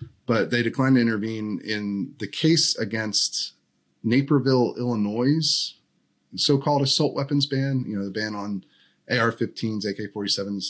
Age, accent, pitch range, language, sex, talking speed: 30-49, American, 95-120 Hz, English, male, 125 wpm